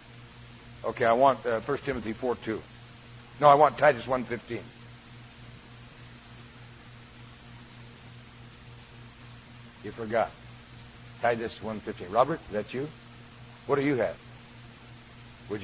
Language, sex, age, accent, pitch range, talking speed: English, male, 60-79, American, 120-125 Hz, 95 wpm